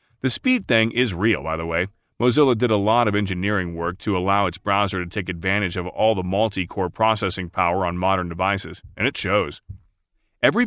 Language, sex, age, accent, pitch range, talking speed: English, male, 30-49, American, 95-120 Hz, 195 wpm